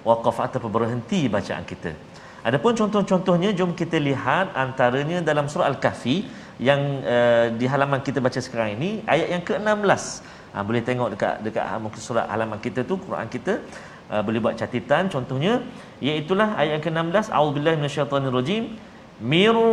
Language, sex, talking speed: Malayalam, male, 145 wpm